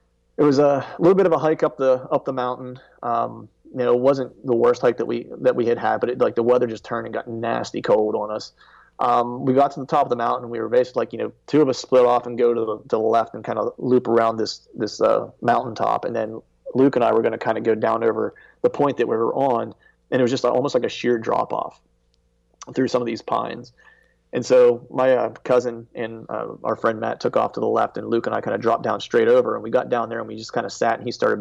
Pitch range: 115-135 Hz